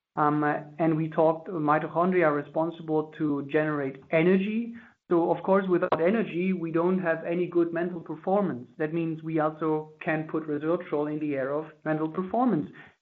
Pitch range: 155-185 Hz